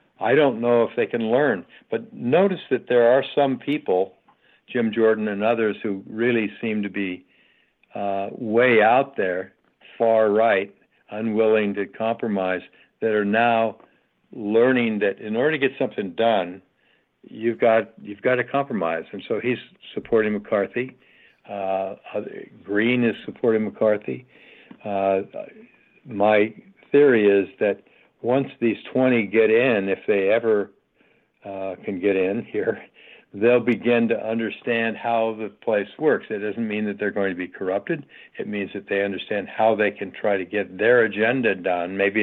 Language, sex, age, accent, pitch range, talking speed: English, male, 60-79, American, 100-115 Hz, 155 wpm